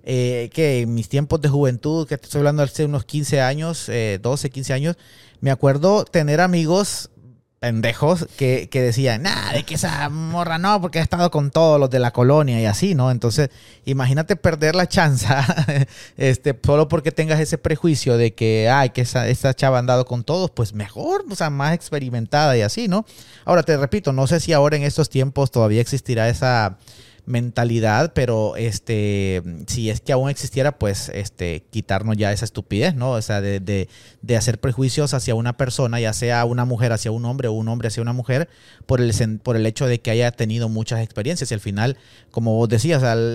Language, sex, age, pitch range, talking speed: Spanish, male, 30-49, 115-150 Hz, 200 wpm